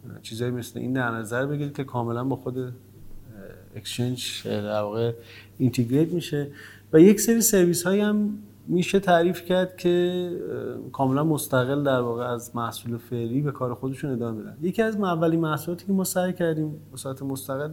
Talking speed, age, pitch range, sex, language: 165 wpm, 30-49, 120-160 Hz, male, Persian